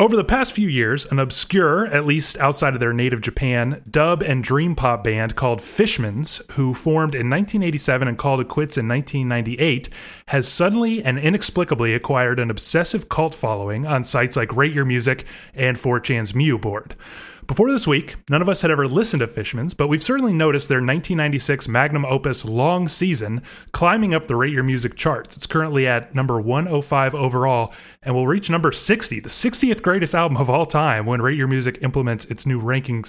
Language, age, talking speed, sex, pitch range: English, 30-49, 190 wpm, male, 125-160 Hz